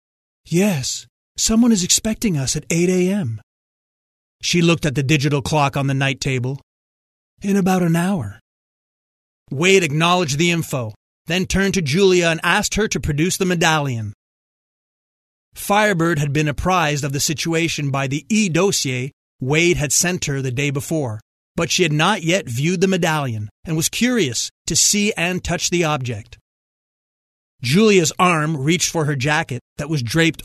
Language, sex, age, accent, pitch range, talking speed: English, male, 30-49, American, 135-180 Hz, 160 wpm